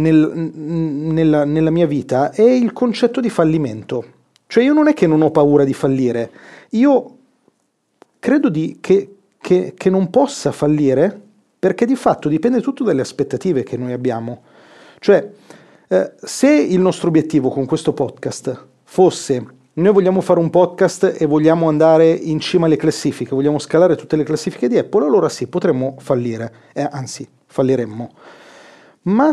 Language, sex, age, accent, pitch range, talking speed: Italian, male, 40-59, native, 145-215 Hz, 150 wpm